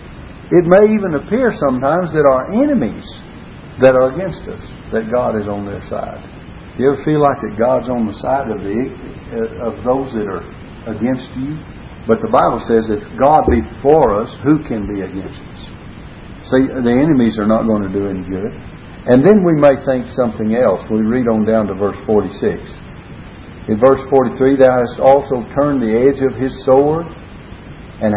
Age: 60-79